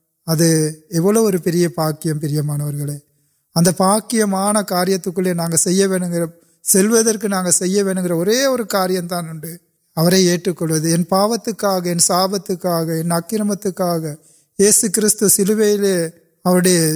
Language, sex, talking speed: Urdu, male, 50 wpm